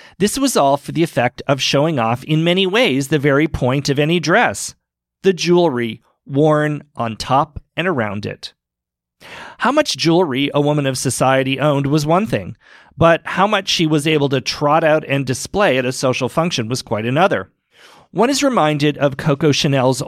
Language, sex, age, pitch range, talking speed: English, male, 40-59, 130-165 Hz, 180 wpm